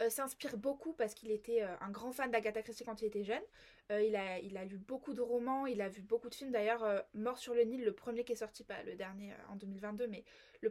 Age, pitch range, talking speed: 20-39, 215-275 Hz, 245 wpm